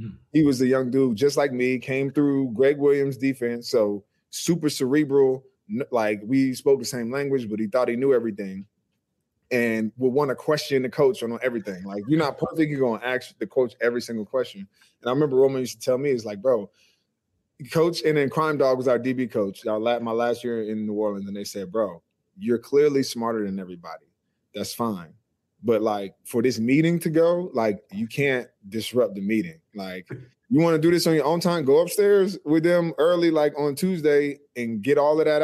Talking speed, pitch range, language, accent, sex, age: 210 wpm, 110-145 Hz, English, American, male, 20-39